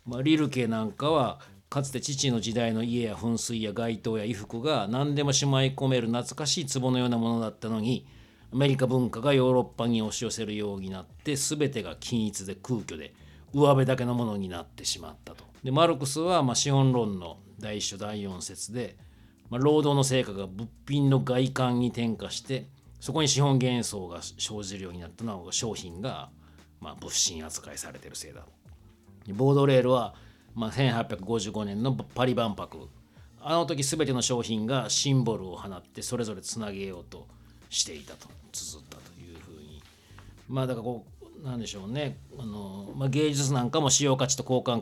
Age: 40-59